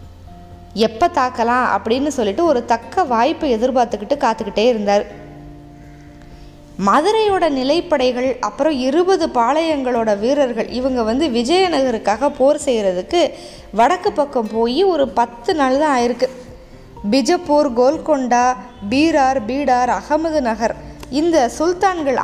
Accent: native